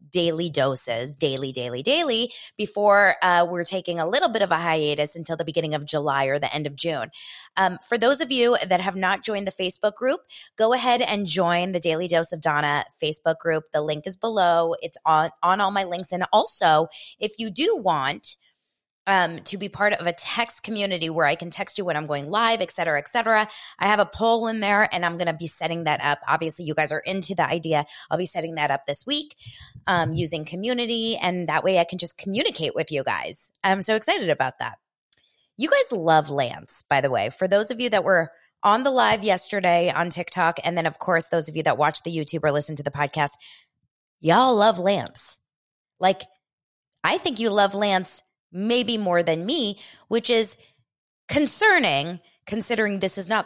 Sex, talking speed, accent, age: female, 210 wpm, American, 20-39